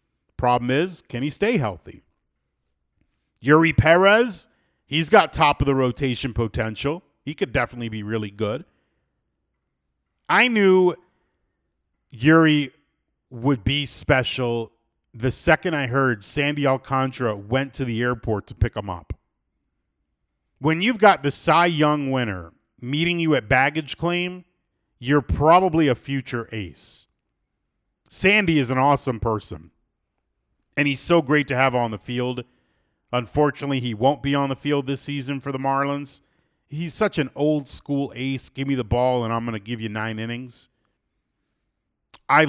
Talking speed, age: 145 wpm, 40-59